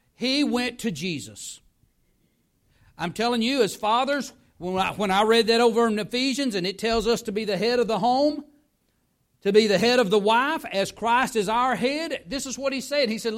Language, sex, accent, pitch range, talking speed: English, male, American, 175-245 Hz, 210 wpm